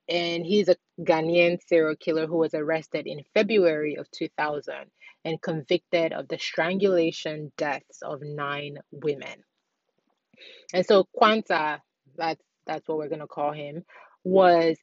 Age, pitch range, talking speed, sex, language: 20-39, 150-185 Hz, 140 wpm, female, English